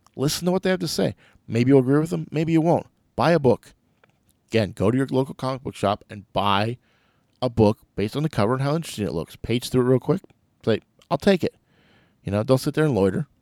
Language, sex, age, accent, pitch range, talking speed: English, male, 40-59, American, 100-130 Hz, 245 wpm